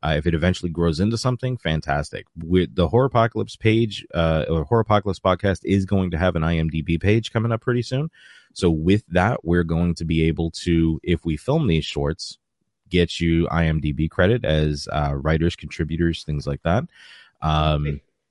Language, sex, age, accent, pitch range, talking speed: English, male, 30-49, American, 80-105 Hz, 180 wpm